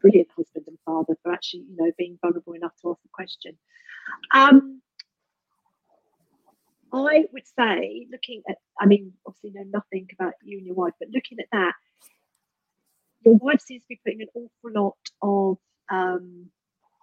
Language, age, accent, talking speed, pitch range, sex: English, 40-59, British, 165 wpm, 185-230 Hz, female